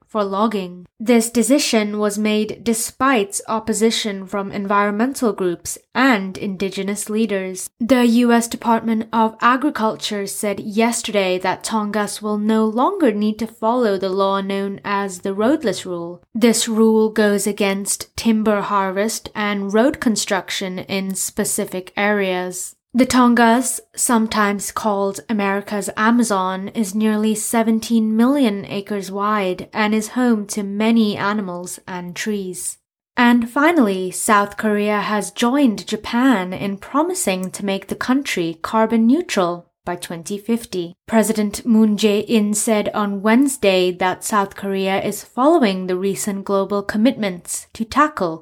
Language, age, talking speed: English, 20-39, 125 wpm